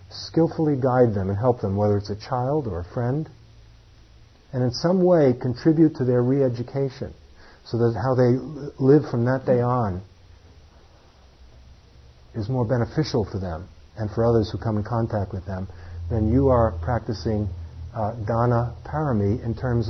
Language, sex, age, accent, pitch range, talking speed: English, male, 50-69, American, 95-125 Hz, 160 wpm